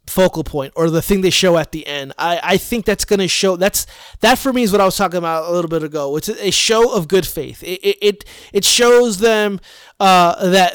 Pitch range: 170-215 Hz